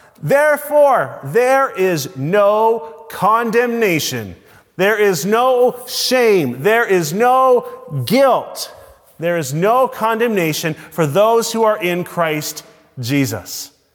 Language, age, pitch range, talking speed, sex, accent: English, 30-49, 145-210 Hz, 105 wpm, male, American